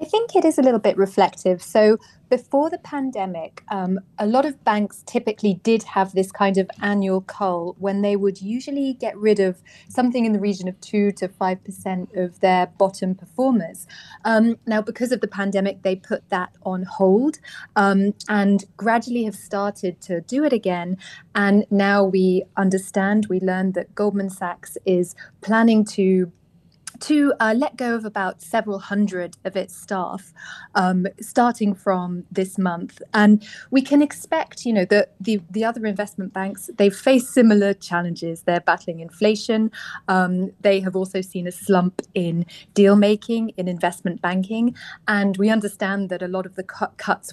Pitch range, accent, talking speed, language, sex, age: 185-220 Hz, British, 165 wpm, English, female, 30-49